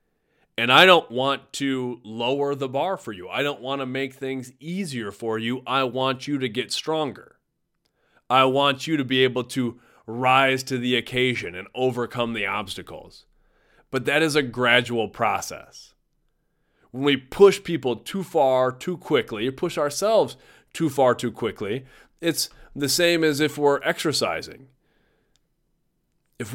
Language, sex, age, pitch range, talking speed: English, male, 30-49, 125-150 Hz, 155 wpm